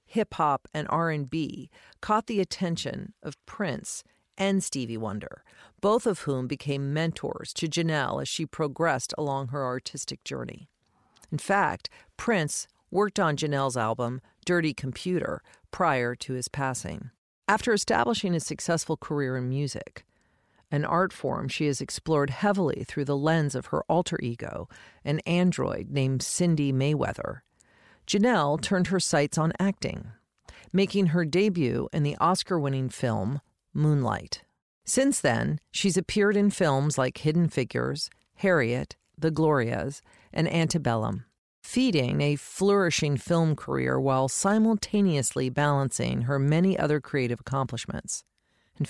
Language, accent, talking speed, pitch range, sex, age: English, American, 130 wpm, 135-180 Hz, female, 50-69